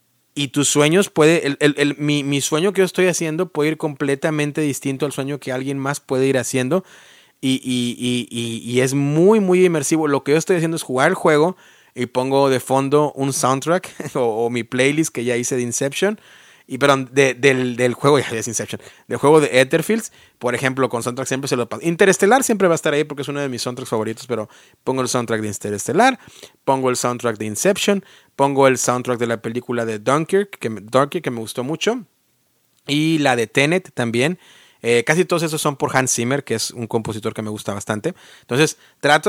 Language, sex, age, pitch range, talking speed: Spanish, male, 30-49, 125-150 Hz, 205 wpm